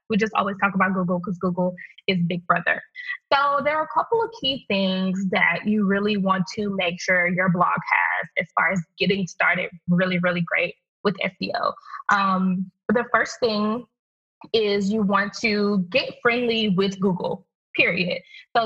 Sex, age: female, 20-39